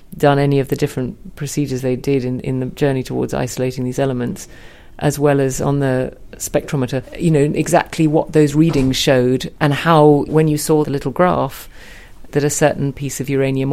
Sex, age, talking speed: female, 40-59, 190 wpm